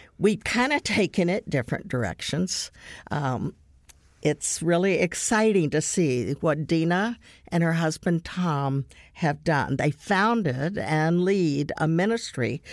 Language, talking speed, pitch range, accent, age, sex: English, 125 wpm, 145-180 Hz, American, 60-79, female